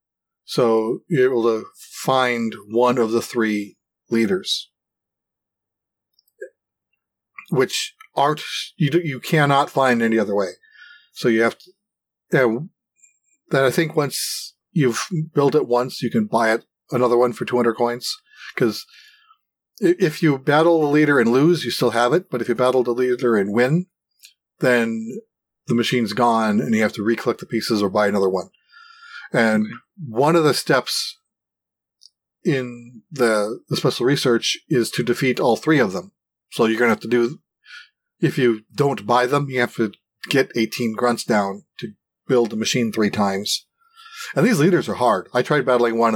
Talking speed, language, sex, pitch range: 165 wpm, English, male, 115-160 Hz